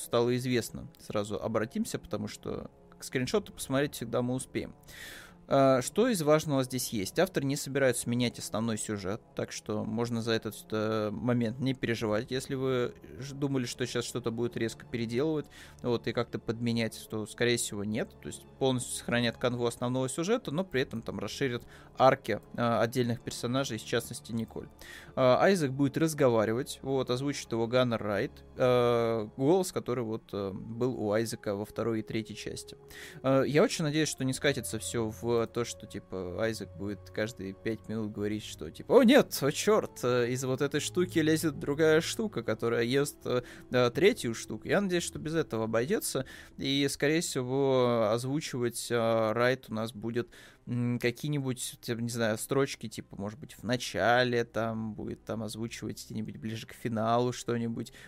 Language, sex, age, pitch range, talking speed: Russian, male, 20-39, 110-135 Hz, 165 wpm